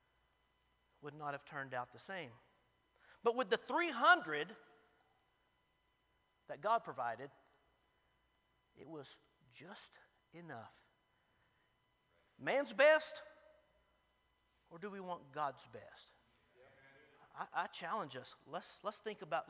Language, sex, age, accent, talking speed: English, male, 50-69, American, 110 wpm